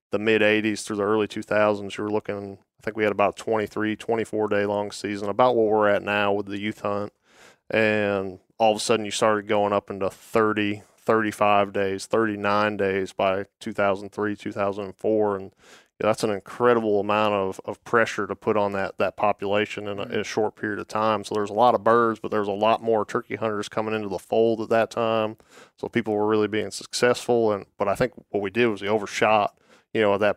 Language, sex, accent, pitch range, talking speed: English, male, American, 100-110 Hz, 215 wpm